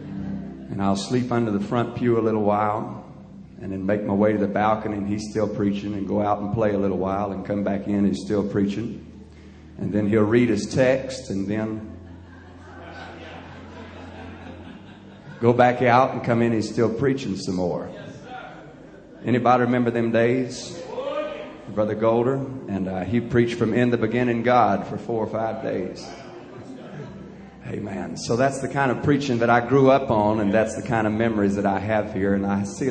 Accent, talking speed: American, 190 wpm